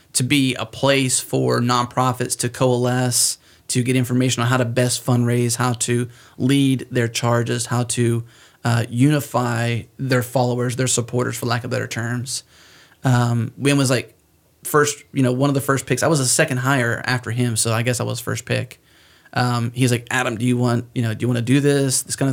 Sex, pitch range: male, 115-135 Hz